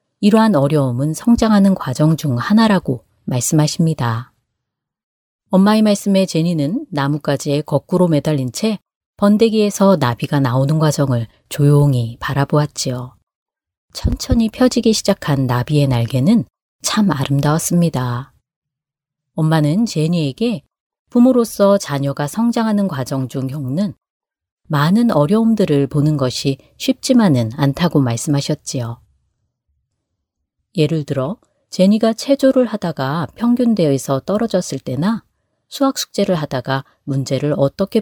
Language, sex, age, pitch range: Korean, female, 30-49, 135-200 Hz